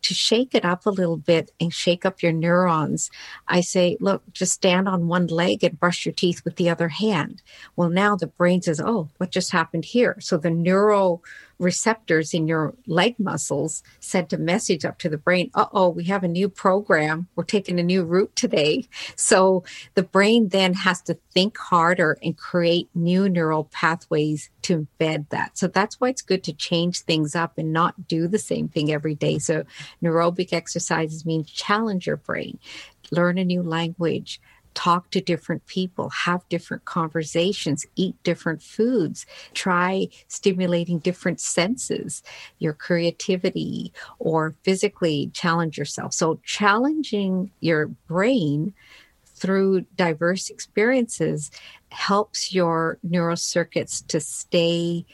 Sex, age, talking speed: female, 50-69, 155 wpm